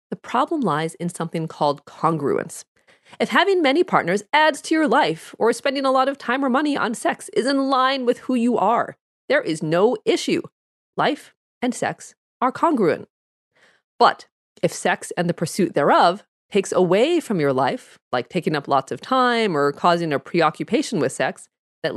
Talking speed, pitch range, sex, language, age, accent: 180 wpm, 175-260 Hz, female, English, 30-49, American